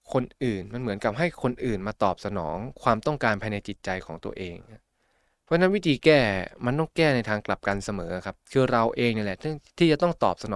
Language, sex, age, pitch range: Thai, male, 20-39, 100-130 Hz